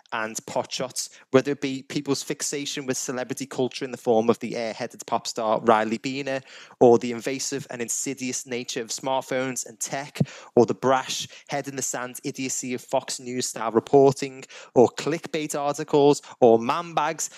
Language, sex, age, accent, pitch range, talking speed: English, male, 20-39, British, 120-145 Hz, 175 wpm